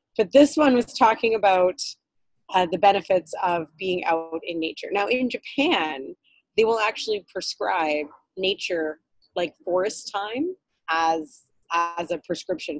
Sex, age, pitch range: female, 20-39, 165-205 Hz